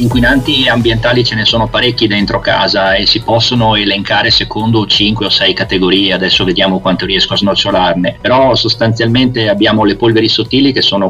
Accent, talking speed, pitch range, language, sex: native, 170 wpm, 95-120 Hz, Italian, male